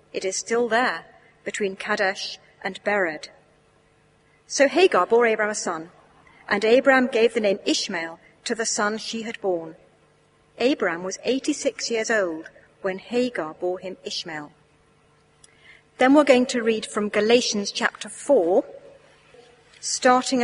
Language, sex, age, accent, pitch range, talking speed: English, female, 40-59, British, 190-255 Hz, 135 wpm